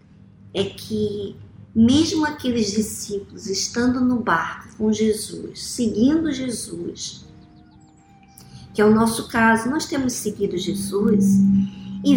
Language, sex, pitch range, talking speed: Portuguese, male, 200-275 Hz, 110 wpm